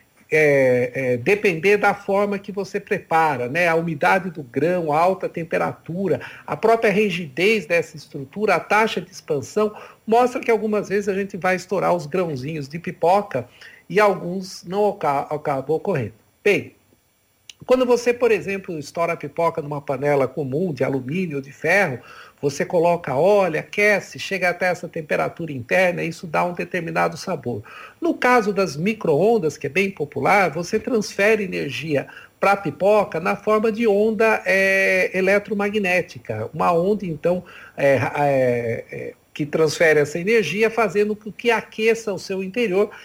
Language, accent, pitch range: Portuguese, Brazilian, 160-205 Hz